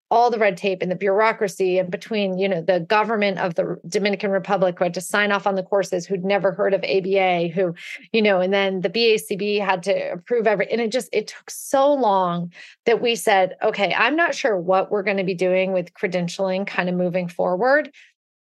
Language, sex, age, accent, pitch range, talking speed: English, female, 30-49, American, 195-260 Hz, 220 wpm